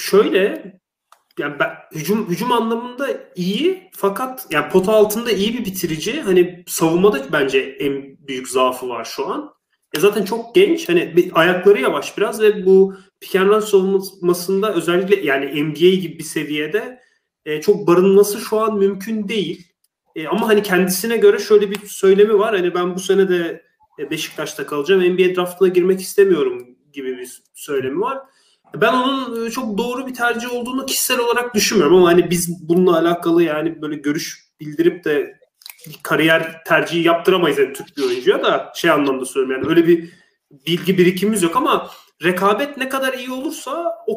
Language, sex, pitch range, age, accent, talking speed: Turkish, male, 175-245 Hz, 30-49, native, 160 wpm